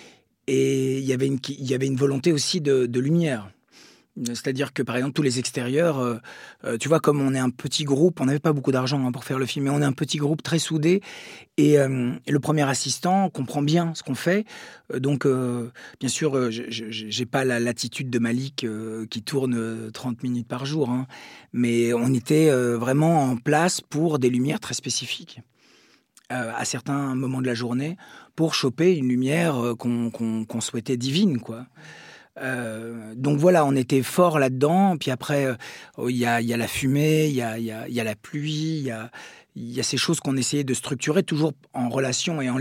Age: 40-59